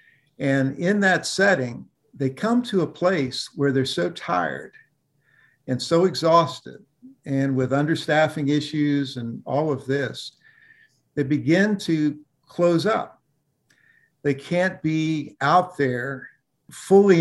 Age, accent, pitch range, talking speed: 50-69, American, 130-165 Hz, 120 wpm